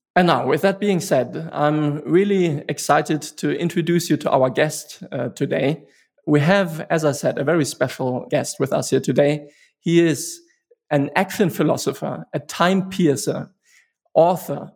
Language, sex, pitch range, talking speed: English, male, 145-180 Hz, 160 wpm